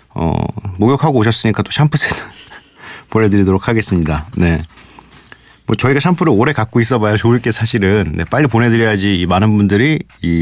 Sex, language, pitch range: male, Korean, 85-115 Hz